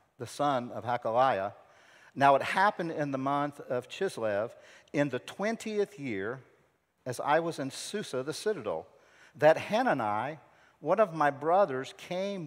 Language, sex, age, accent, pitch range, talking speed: English, male, 50-69, American, 115-160 Hz, 145 wpm